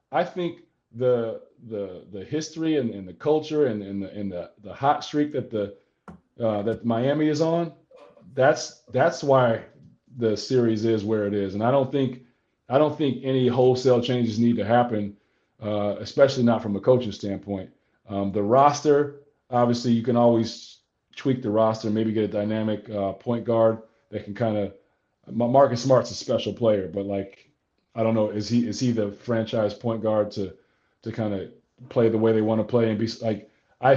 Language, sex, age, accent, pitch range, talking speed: English, male, 30-49, American, 110-130 Hz, 190 wpm